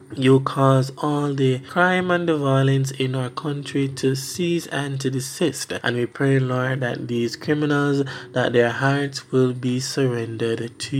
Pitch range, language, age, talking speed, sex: 125-140 Hz, English, 20-39, 165 wpm, male